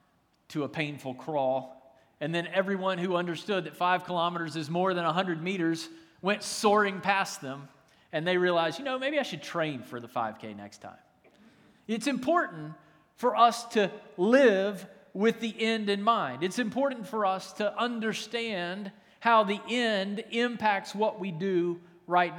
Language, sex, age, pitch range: English, male, 40-59, 170-225 Hz